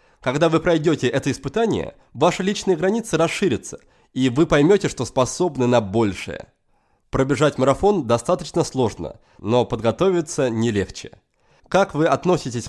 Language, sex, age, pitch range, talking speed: Russian, male, 20-39, 120-175 Hz, 130 wpm